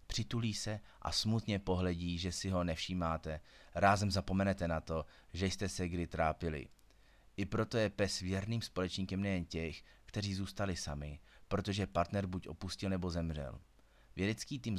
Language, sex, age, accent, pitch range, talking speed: Czech, male, 30-49, native, 85-100 Hz, 150 wpm